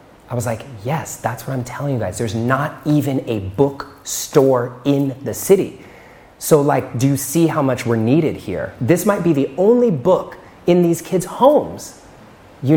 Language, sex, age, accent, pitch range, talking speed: English, male, 30-49, American, 100-130 Hz, 190 wpm